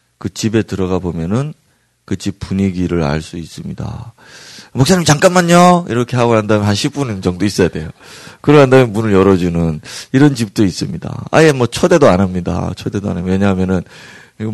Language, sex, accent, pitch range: Korean, male, native, 90-115 Hz